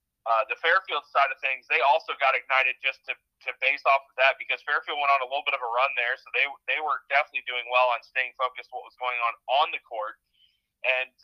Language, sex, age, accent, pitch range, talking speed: English, male, 30-49, American, 125-155 Hz, 245 wpm